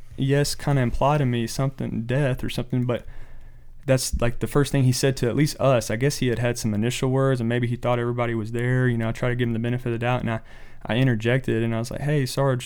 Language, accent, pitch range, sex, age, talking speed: English, American, 110-130 Hz, male, 30-49, 280 wpm